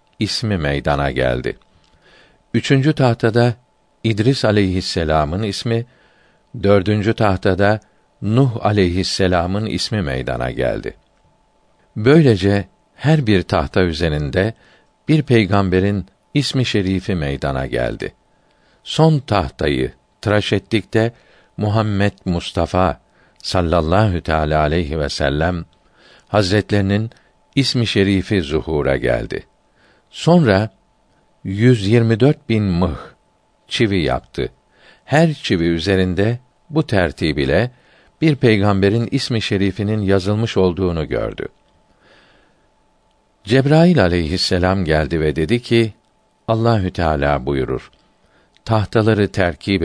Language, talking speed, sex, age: Turkish, 85 wpm, male, 50-69